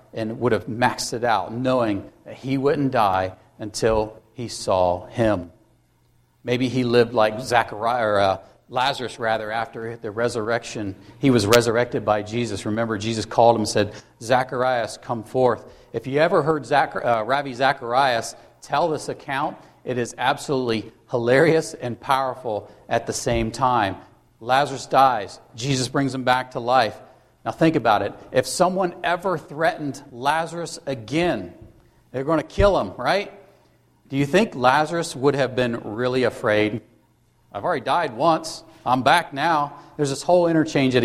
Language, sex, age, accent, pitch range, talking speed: English, male, 40-59, American, 115-140 Hz, 155 wpm